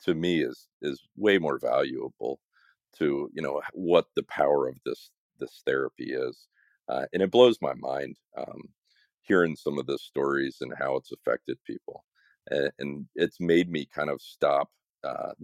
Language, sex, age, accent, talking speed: English, male, 40-59, American, 170 wpm